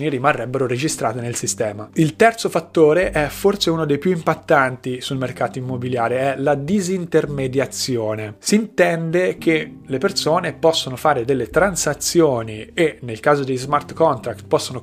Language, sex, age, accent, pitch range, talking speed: Italian, male, 30-49, native, 125-160 Hz, 140 wpm